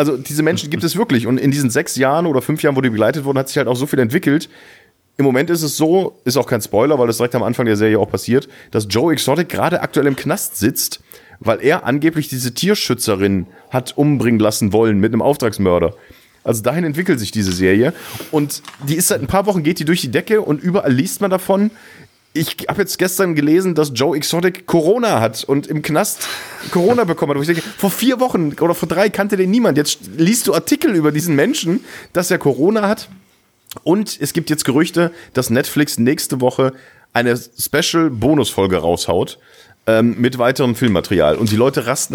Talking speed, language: 210 wpm, German